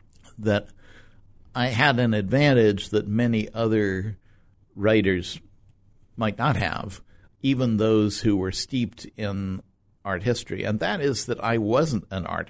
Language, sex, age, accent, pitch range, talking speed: English, male, 60-79, American, 95-115 Hz, 135 wpm